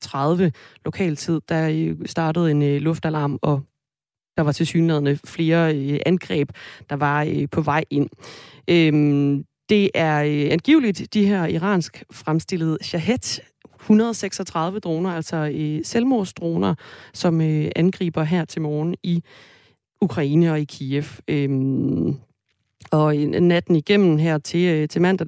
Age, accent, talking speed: 30-49, native, 105 wpm